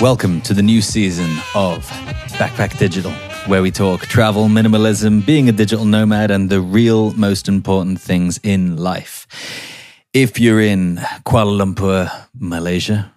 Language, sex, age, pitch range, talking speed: English, male, 30-49, 95-110 Hz, 140 wpm